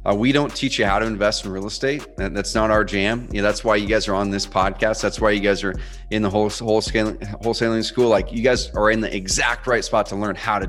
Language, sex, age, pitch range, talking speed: English, male, 30-49, 100-110 Hz, 280 wpm